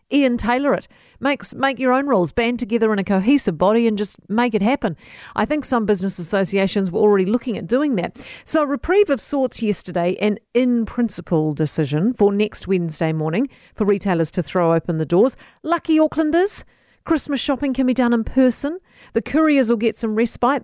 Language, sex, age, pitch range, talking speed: English, female, 40-59, 195-265 Hz, 190 wpm